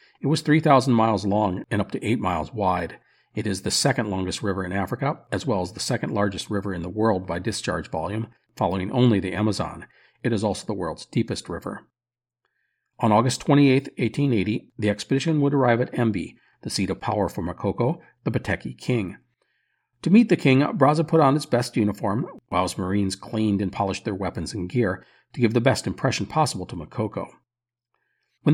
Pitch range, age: 100-145 Hz, 50-69